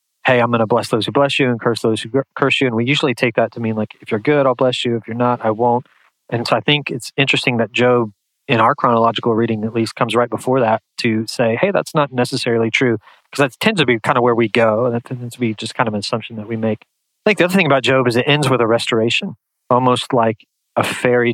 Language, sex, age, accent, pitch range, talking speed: English, male, 30-49, American, 110-125 Hz, 280 wpm